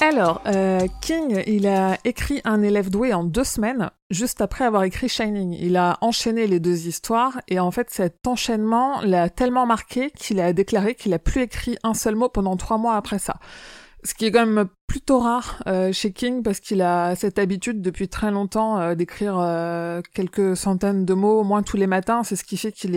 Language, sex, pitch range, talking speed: French, female, 180-225 Hz, 210 wpm